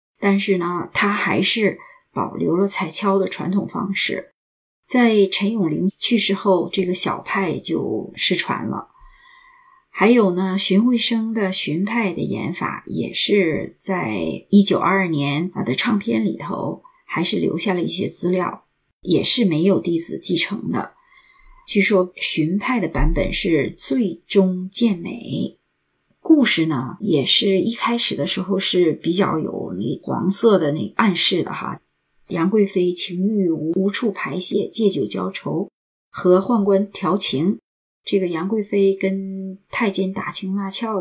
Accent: native